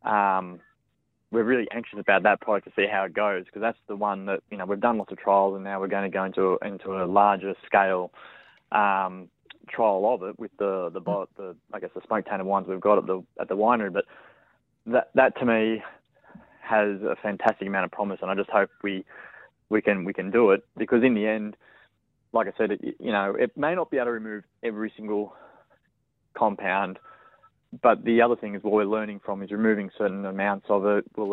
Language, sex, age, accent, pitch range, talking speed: English, male, 20-39, Australian, 95-110 Hz, 215 wpm